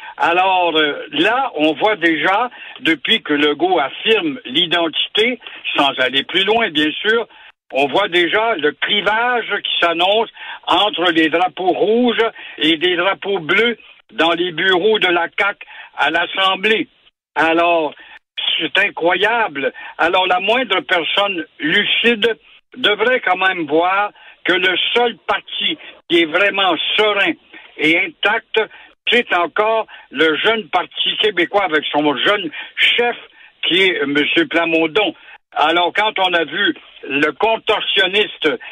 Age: 60-79